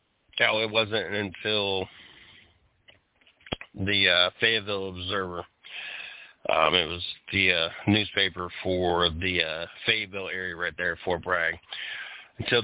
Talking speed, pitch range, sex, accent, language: 105 wpm, 90-110 Hz, male, American, English